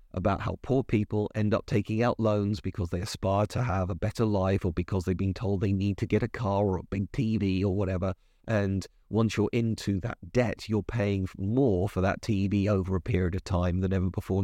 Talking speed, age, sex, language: 225 wpm, 40-59, male, English